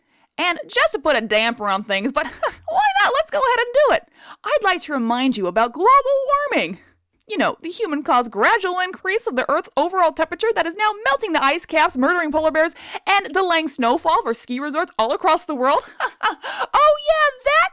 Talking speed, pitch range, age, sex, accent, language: 205 wpm, 235-345 Hz, 20-39, female, American, English